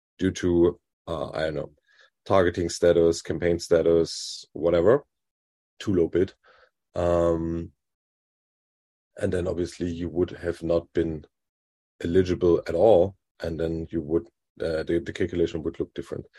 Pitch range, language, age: 85-95 Hz, English, 30-49